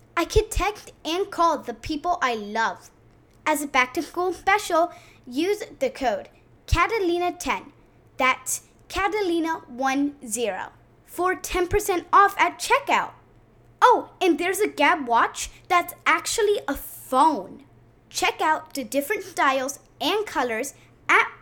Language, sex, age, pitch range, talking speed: English, female, 20-39, 265-365 Hz, 120 wpm